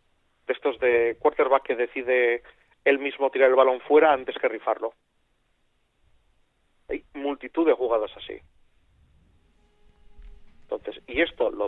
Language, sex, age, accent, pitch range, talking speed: Spanish, male, 40-59, Spanish, 115-165 Hz, 120 wpm